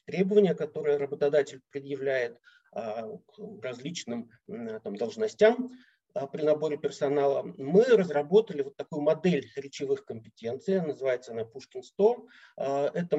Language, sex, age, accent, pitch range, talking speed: Russian, male, 50-69, native, 140-210 Hz, 100 wpm